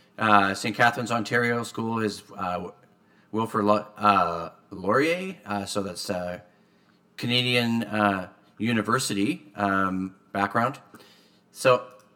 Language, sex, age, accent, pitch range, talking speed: English, male, 30-49, American, 100-110 Hz, 95 wpm